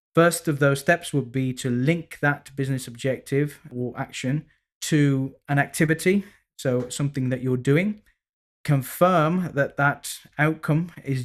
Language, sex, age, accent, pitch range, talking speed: English, male, 20-39, British, 130-155 Hz, 140 wpm